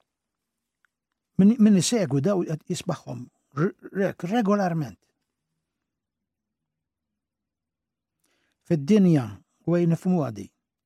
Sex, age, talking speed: male, 60-79, 55 wpm